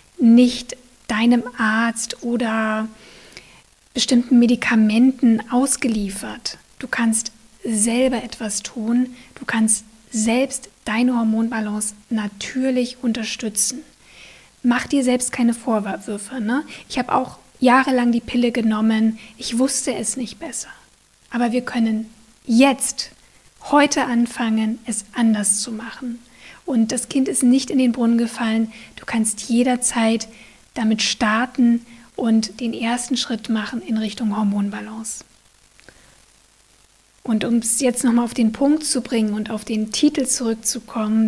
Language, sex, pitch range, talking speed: German, female, 220-250 Hz, 120 wpm